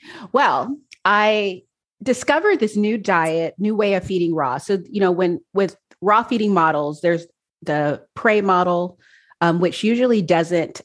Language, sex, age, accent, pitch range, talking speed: English, female, 30-49, American, 150-180 Hz, 150 wpm